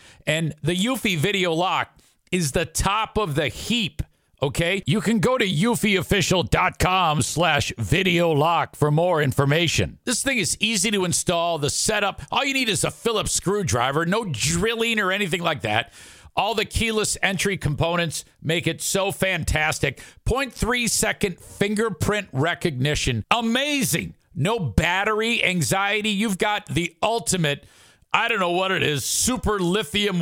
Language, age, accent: English, 50-69, American